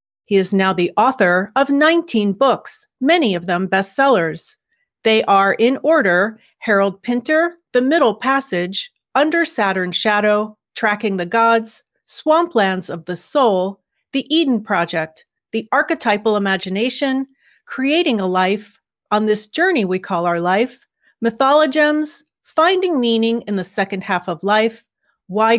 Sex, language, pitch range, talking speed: female, English, 195-270 Hz, 135 wpm